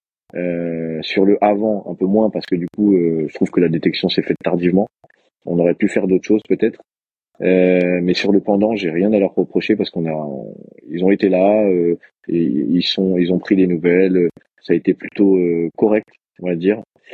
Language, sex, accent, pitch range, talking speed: French, male, French, 85-100 Hz, 220 wpm